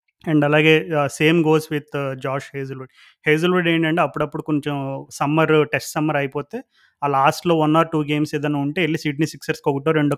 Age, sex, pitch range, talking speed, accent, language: 30-49, male, 145-170 Hz, 165 wpm, native, Telugu